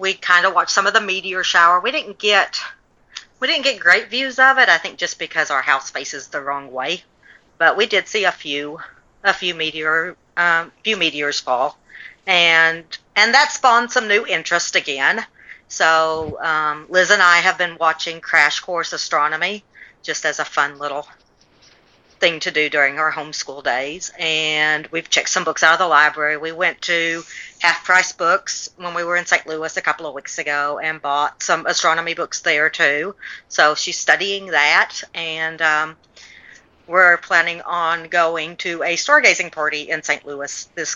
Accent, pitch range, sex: American, 155-190 Hz, female